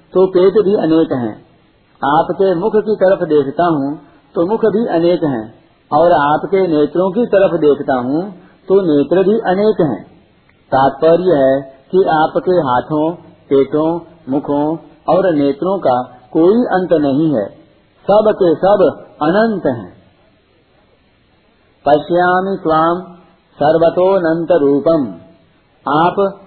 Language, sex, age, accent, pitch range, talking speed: Hindi, male, 50-69, native, 145-185 Hz, 120 wpm